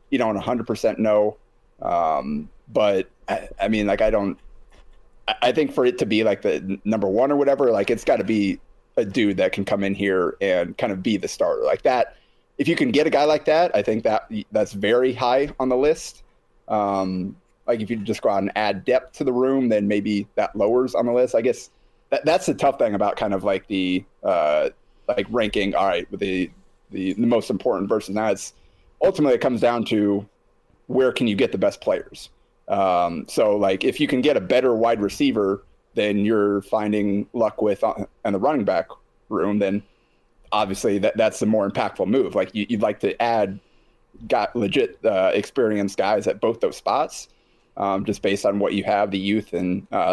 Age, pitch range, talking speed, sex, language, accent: 30-49, 100-125 Hz, 210 wpm, male, English, American